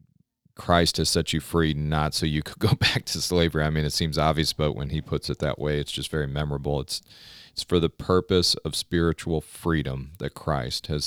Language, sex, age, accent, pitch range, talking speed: English, male, 40-59, American, 70-80 Hz, 215 wpm